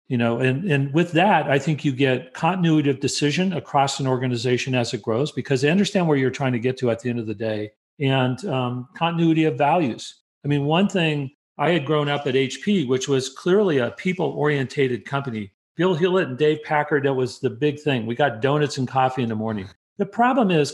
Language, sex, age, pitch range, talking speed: English, male, 40-59, 130-165 Hz, 225 wpm